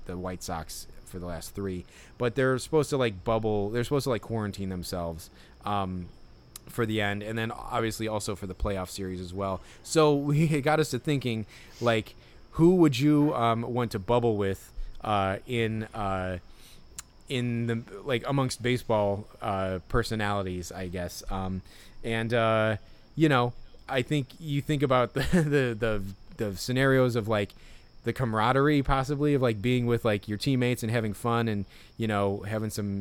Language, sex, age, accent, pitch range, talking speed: English, male, 20-39, American, 100-125 Hz, 175 wpm